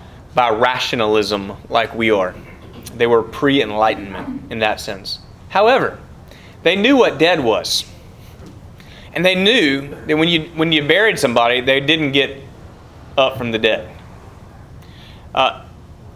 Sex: male